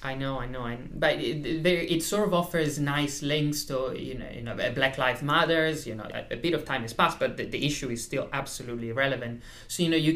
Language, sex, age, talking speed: English, male, 20-39, 250 wpm